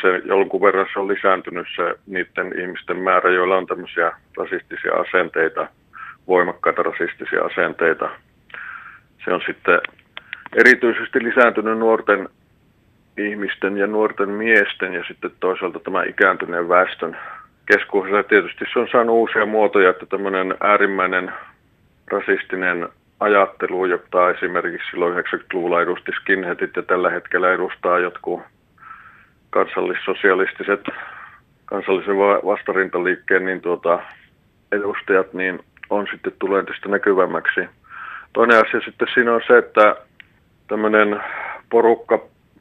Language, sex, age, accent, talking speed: Finnish, male, 40-59, native, 110 wpm